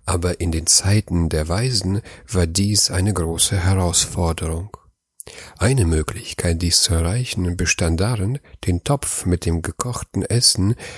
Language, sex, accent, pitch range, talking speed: German, male, German, 85-105 Hz, 130 wpm